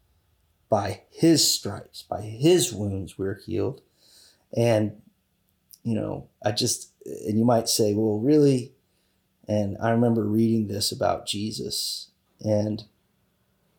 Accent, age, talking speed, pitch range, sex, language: American, 30-49, 120 wpm, 105-120 Hz, male, English